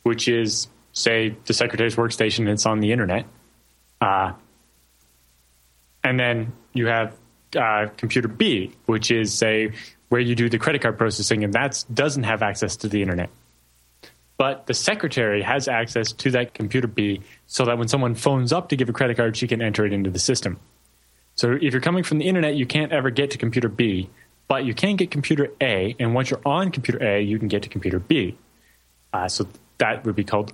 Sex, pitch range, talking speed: male, 105-130 Hz, 200 wpm